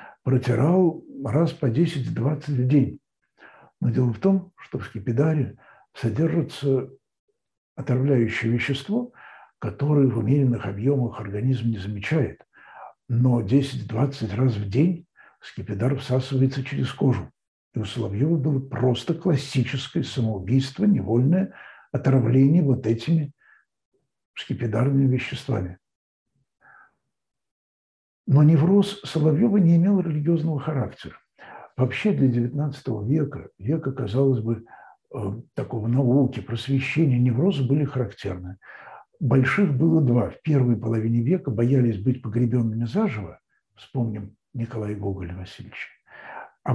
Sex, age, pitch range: male, 60-79, 120-155 Hz